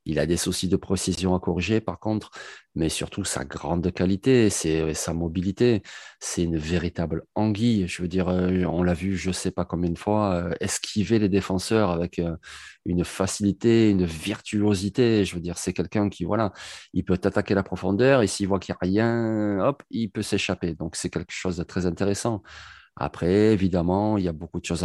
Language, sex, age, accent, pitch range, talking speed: French, male, 30-49, French, 85-105 Hz, 200 wpm